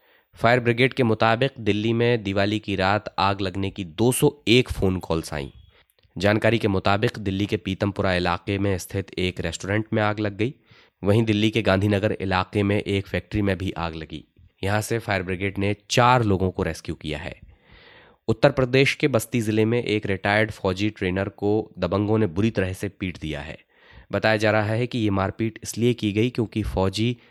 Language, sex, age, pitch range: Hindi, male, 20-39, 95-110 Hz